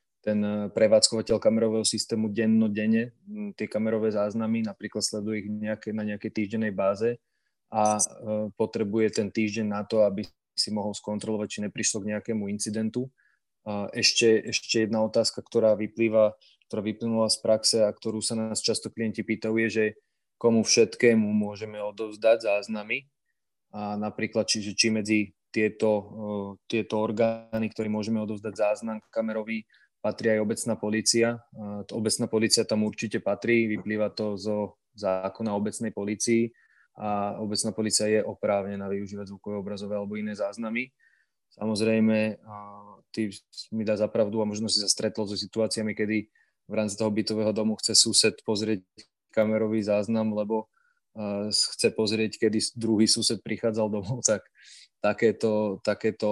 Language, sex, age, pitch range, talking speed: Slovak, male, 20-39, 105-110 Hz, 135 wpm